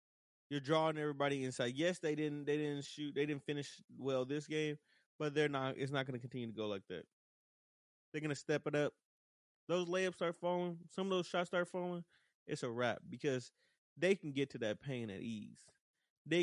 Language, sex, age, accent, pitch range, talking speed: English, male, 20-39, American, 135-165 Hz, 200 wpm